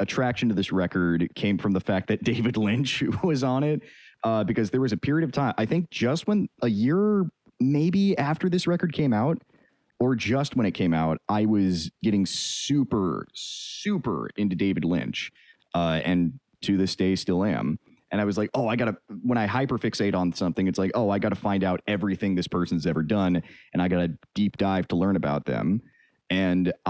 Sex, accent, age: male, American, 30-49